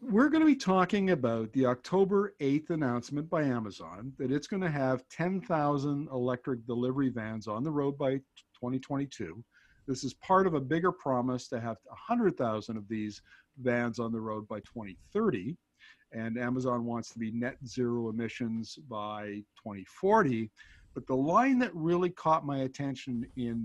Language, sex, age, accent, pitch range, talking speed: English, male, 50-69, American, 120-150 Hz, 180 wpm